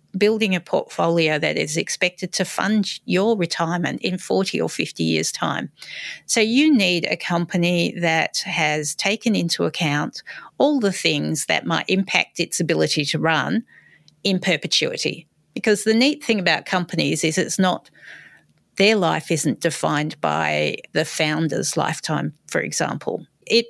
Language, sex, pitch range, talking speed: English, female, 160-205 Hz, 145 wpm